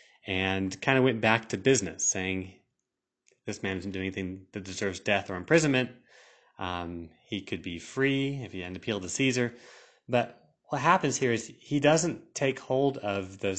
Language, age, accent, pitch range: English, 30-49, American, 95-125 Hz